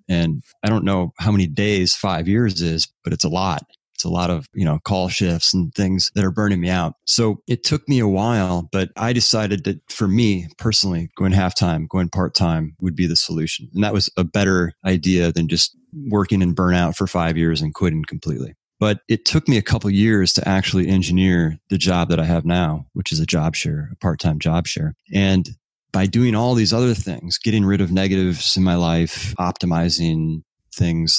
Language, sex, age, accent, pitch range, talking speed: English, male, 30-49, American, 85-100 Hz, 210 wpm